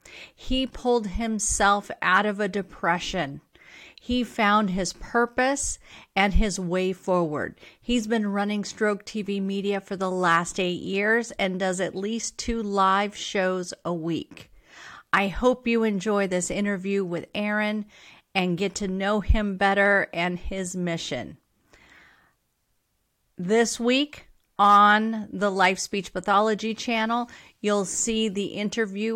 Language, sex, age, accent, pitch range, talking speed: English, female, 50-69, American, 180-210 Hz, 130 wpm